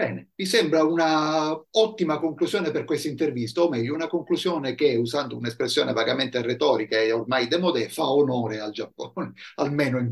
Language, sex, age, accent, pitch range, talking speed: Italian, male, 50-69, native, 120-175 Hz, 160 wpm